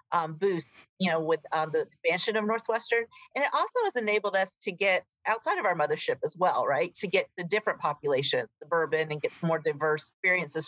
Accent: American